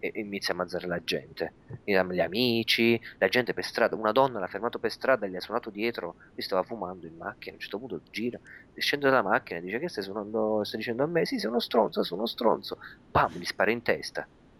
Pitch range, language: 95-145 Hz, Italian